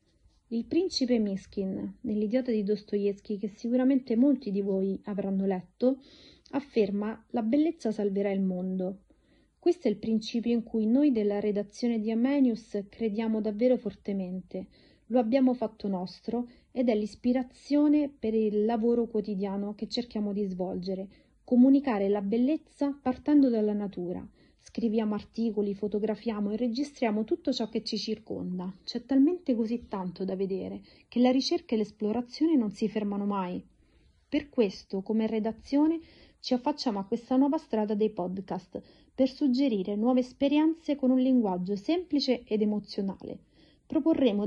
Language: Italian